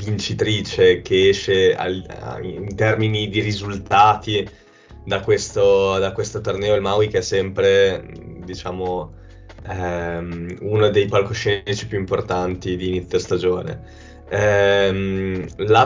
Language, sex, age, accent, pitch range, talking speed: Italian, male, 20-39, native, 95-110 Hz, 115 wpm